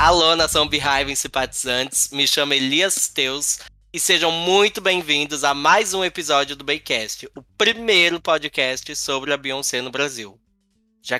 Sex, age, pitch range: male, 10-29, 125-155 Hz